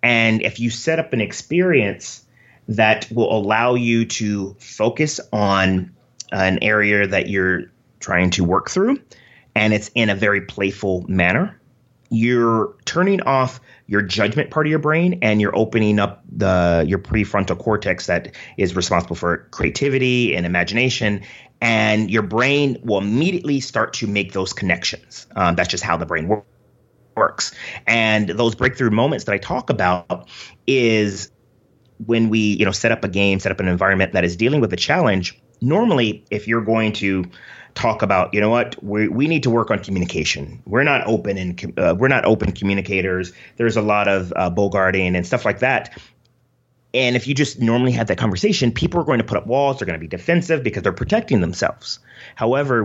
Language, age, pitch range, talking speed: English, 30-49, 100-125 Hz, 180 wpm